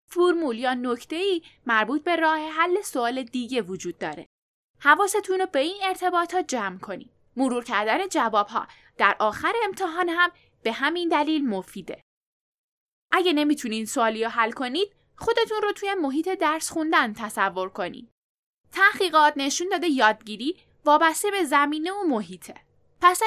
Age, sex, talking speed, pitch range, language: 10-29, female, 140 wpm, 230-350 Hz, Persian